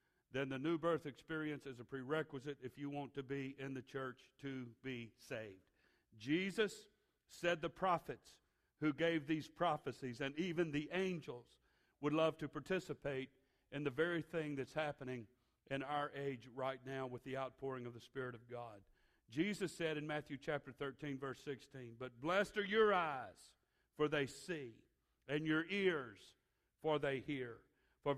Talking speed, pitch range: 165 wpm, 140-170 Hz